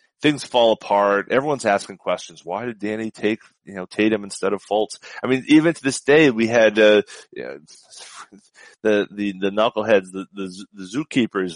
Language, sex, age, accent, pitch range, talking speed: English, male, 30-49, American, 95-130 Hz, 180 wpm